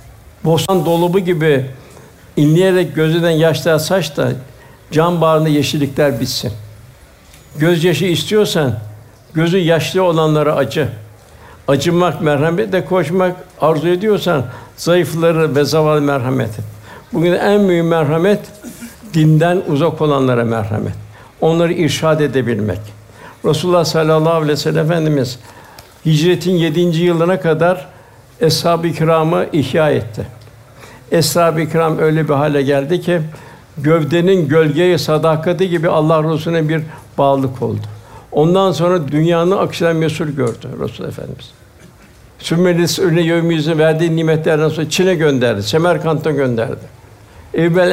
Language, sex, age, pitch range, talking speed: Turkish, male, 60-79, 130-170 Hz, 110 wpm